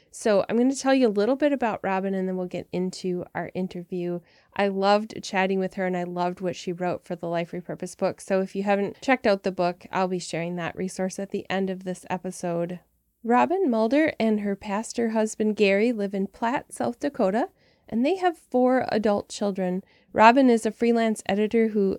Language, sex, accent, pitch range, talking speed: English, female, American, 185-230 Hz, 210 wpm